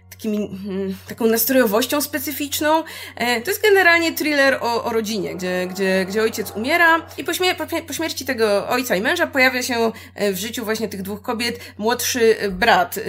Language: Polish